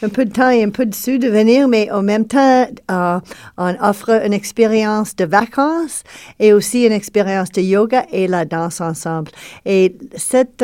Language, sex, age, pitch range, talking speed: French, female, 50-69, 175-210 Hz, 185 wpm